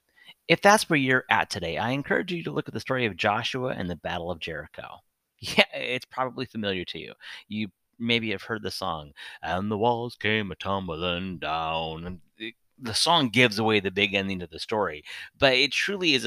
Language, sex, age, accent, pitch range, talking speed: English, male, 30-49, American, 110-155 Hz, 205 wpm